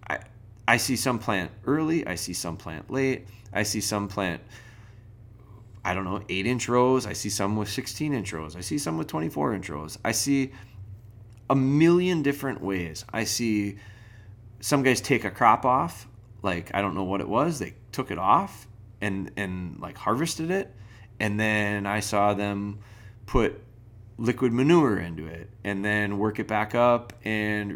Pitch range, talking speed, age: 105-120 Hz, 175 wpm, 30-49